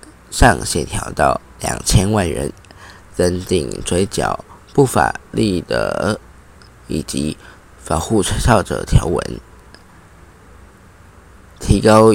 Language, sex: Chinese, male